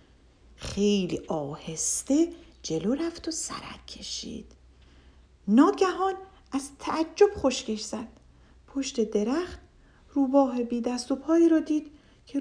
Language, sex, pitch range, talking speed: Persian, female, 215-285 Hz, 100 wpm